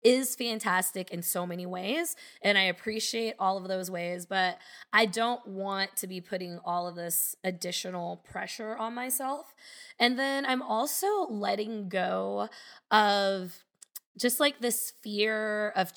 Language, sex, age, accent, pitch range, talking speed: English, female, 20-39, American, 185-240 Hz, 145 wpm